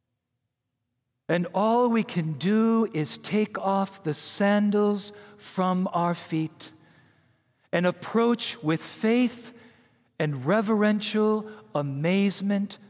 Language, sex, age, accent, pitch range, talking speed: English, male, 50-69, American, 125-210 Hz, 95 wpm